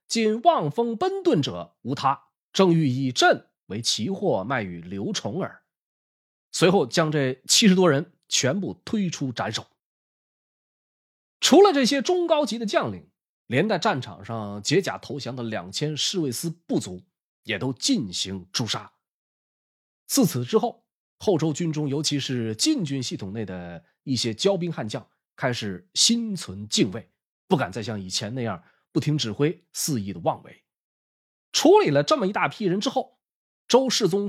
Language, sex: Chinese, male